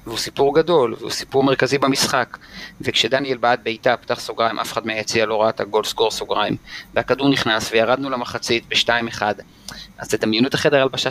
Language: Hebrew